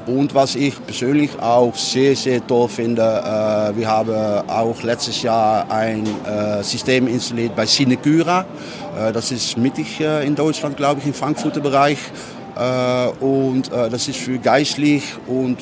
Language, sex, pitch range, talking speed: German, male, 115-140 Hz, 160 wpm